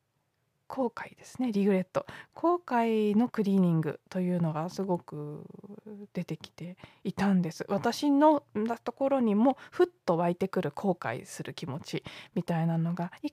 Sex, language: female, Japanese